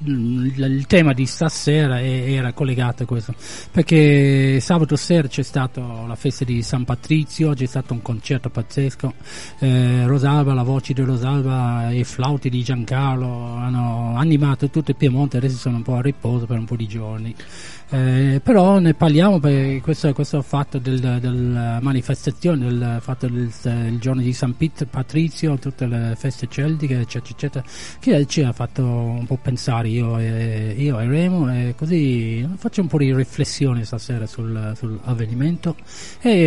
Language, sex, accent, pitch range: Italian, male, native, 120-150 Hz